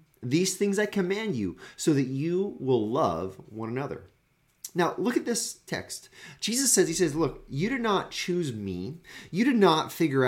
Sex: male